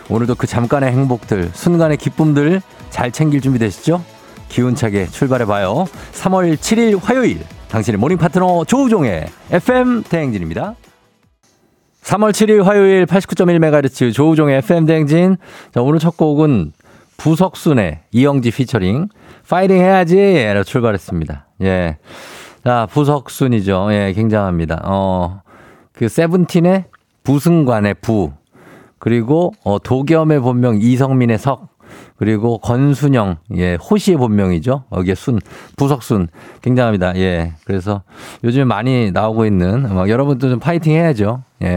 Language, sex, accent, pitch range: Korean, male, native, 110-160 Hz